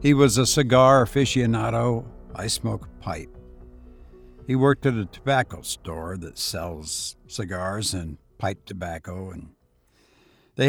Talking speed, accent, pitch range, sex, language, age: 125 wpm, American, 95-130 Hz, male, English, 60-79